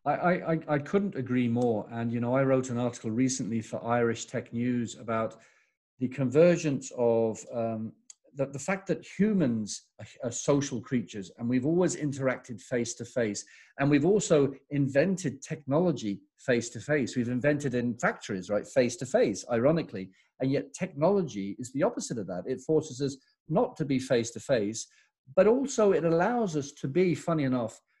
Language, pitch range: English, 120-170 Hz